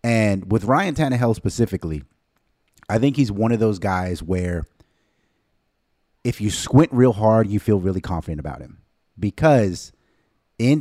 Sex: male